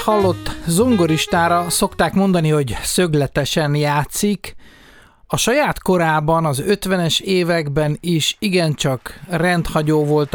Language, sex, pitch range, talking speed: English, male, 140-175 Hz, 100 wpm